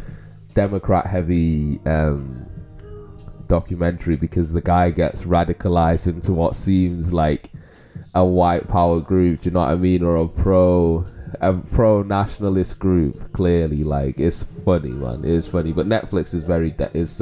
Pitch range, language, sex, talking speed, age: 80-100 Hz, English, male, 145 wpm, 20-39